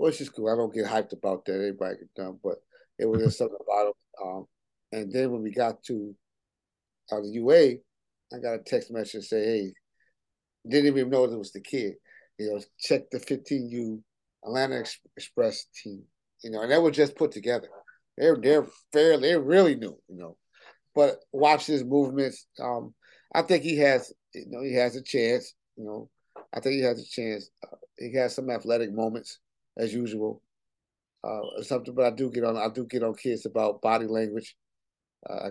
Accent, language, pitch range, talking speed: American, English, 110-140 Hz, 195 wpm